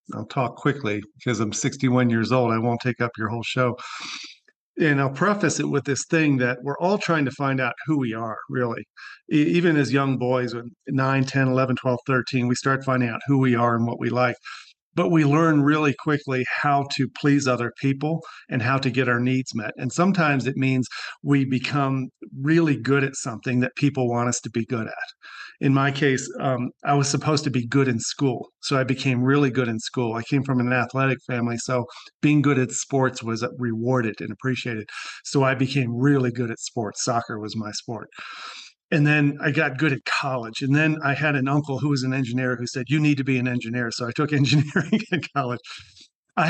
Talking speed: 215 wpm